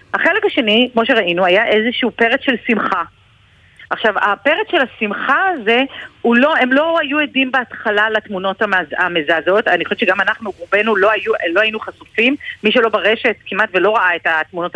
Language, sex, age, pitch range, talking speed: Hebrew, female, 40-59, 185-250 Hz, 165 wpm